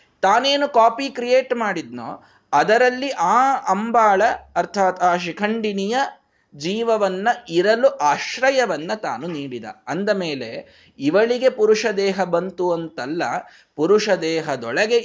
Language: Kannada